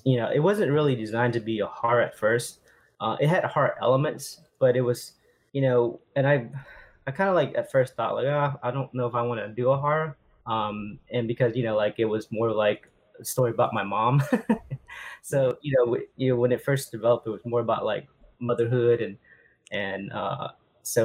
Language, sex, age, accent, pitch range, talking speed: English, male, 20-39, American, 115-135 Hz, 220 wpm